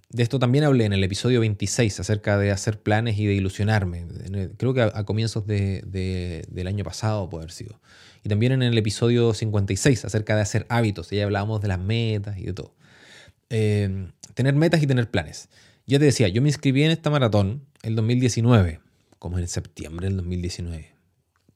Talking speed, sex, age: 185 wpm, male, 20-39